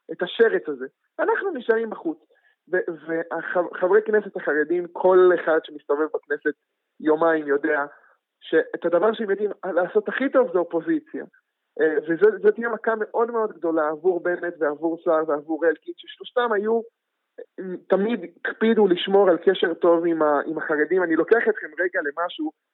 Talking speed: 135 wpm